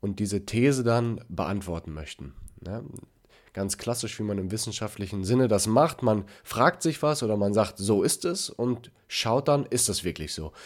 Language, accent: German, German